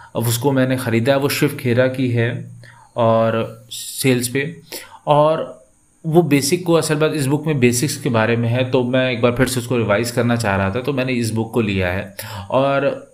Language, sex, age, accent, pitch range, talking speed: Hindi, male, 30-49, native, 115-135 Hz, 215 wpm